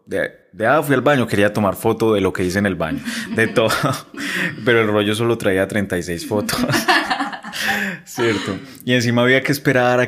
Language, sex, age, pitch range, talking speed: Spanish, male, 20-39, 95-115 Hz, 190 wpm